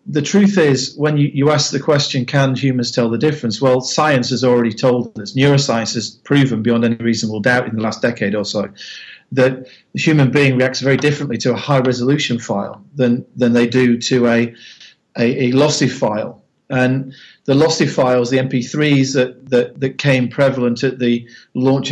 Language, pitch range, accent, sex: English, 120-135 Hz, British, male